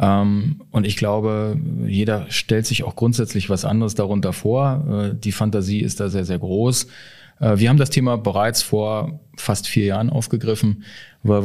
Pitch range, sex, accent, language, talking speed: 100-115 Hz, male, German, German, 155 wpm